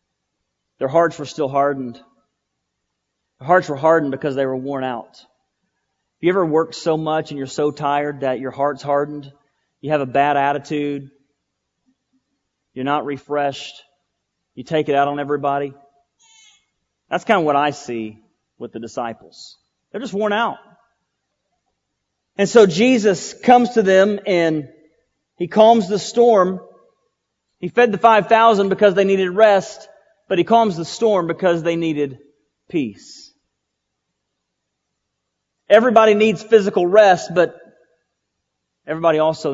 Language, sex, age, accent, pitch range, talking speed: English, male, 30-49, American, 135-185 Hz, 135 wpm